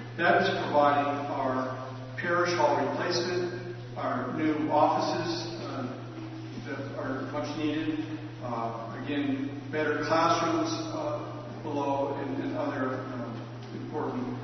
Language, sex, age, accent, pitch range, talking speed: English, male, 50-69, American, 125-155 Hz, 105 wpm